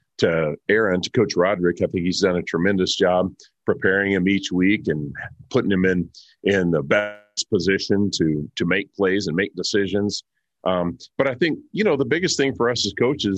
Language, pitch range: English, 90-110 Hz